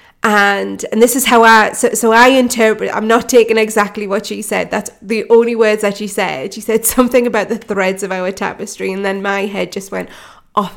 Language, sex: English, female